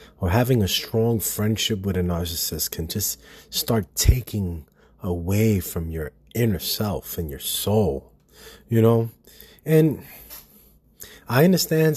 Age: 30-49